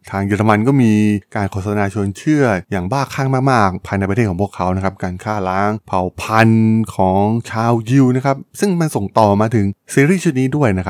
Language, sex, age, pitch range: Thai, male, 20-39, 95-125 Hz